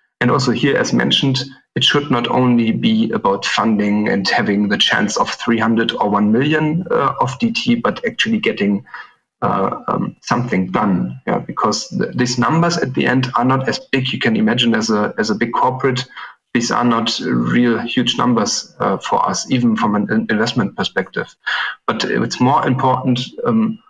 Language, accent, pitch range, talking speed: English, German, 115-150 Hz, 180 wpm